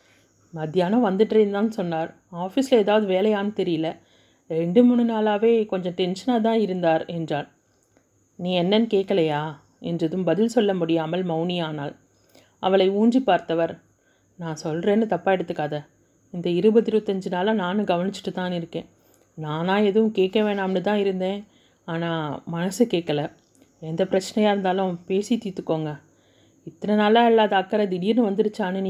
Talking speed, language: 120 wpm, Tamil